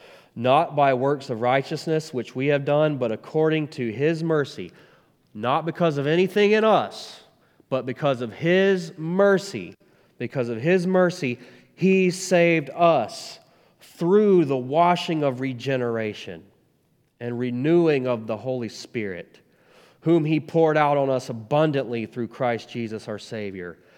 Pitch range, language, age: 115-155 Hz, English, 30-49